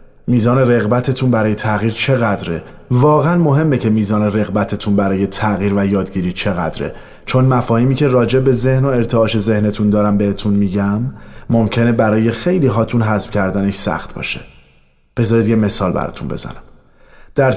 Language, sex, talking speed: Persian, male, 140 wpm